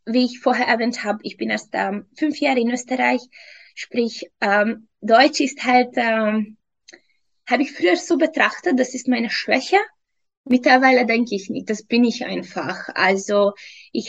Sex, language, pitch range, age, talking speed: female, German, 225-290 Hz, 20-39, 160 wpm